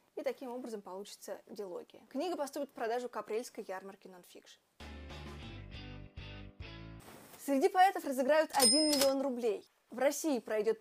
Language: Russian